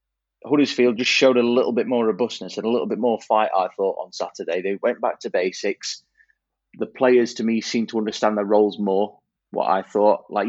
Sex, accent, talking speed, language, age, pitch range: male, British, 210 wpm, English, 20-39, 100-115 Hz